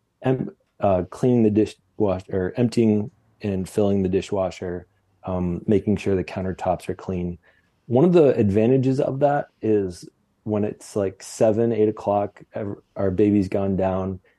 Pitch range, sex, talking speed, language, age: 95-110 Hz, male, 145 wpm, English, 20-39